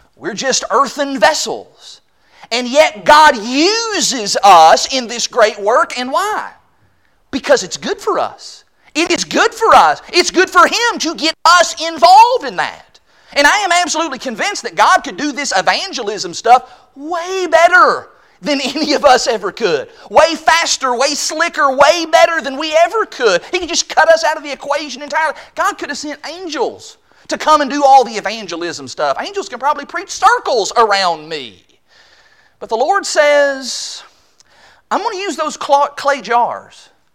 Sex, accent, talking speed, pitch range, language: male, American, 170 wpm, 270-350 Hz, English